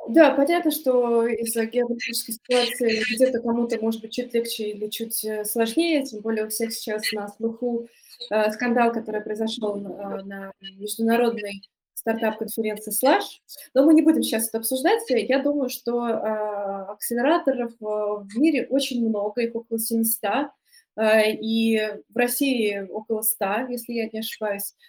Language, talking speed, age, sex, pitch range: Russian, 145 wpm, 20-39, female, 210-250 Hz